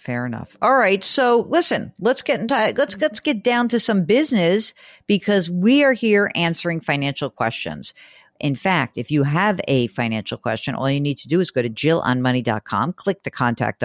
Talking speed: 185 wpm